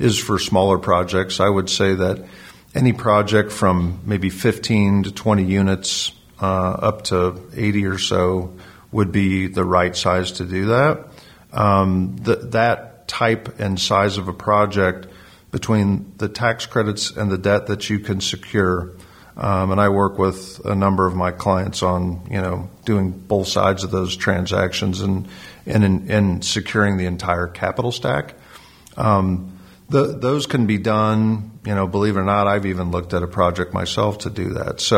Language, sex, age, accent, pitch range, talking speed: English, male, 50-69, American, 95-105 Hz, 170 wpm